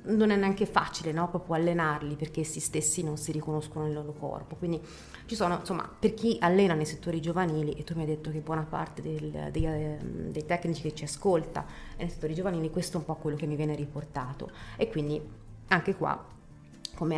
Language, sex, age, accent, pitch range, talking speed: Italian, female, 30-49, native, 145-170 Hz, 205 wpm